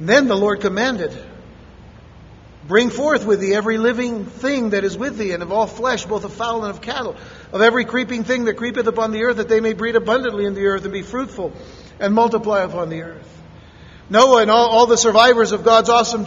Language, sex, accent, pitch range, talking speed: English, male, American, 205-250 Hz, 220 wpm